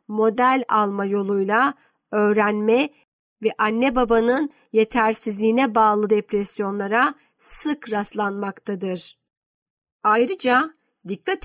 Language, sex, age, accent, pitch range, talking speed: Turkish, female, 50-69, native, 210-255 Hz, 75 wpm